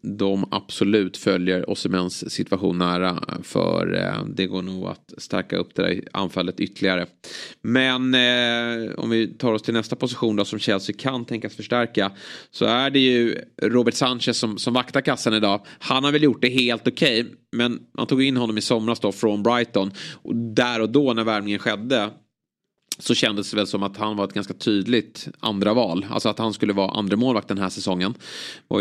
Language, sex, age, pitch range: Swedish, male, 30-49, 100-125 Hz